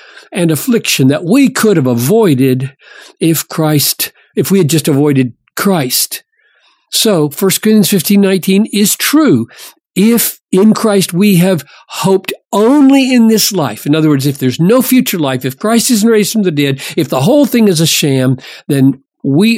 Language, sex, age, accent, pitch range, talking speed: English, male, 50-69, American, 140-205 Hz, 170 wpm